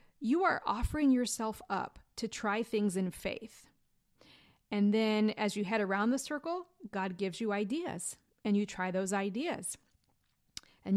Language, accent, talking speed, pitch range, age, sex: English, American, 155 wpm, 200-250 Hz, 40-59, female